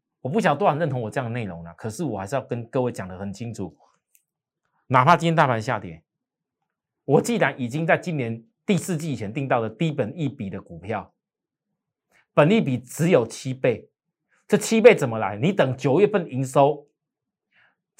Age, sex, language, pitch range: 30-49, male, Chinese, 115-160 Hz